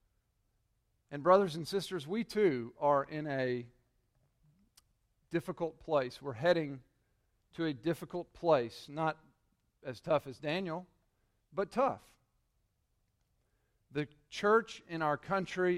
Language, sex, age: English, male, 50-69